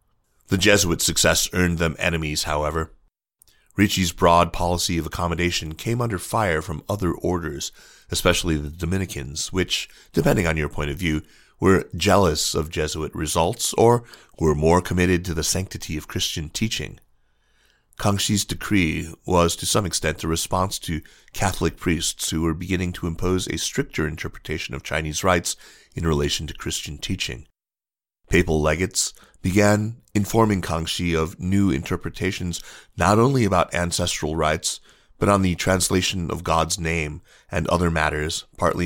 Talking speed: 145 wpm